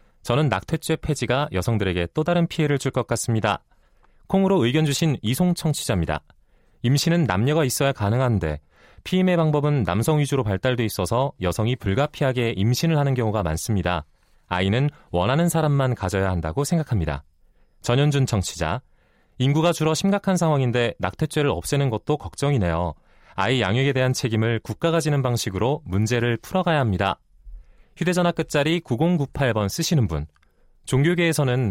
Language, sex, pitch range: Korean, male, 105-155 Hz